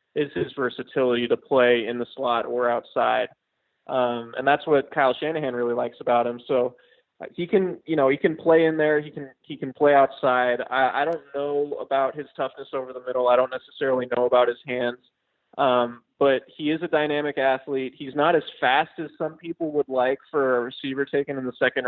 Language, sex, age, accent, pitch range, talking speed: English, male, 20-39, American, 125-145 Hz, 210 wpm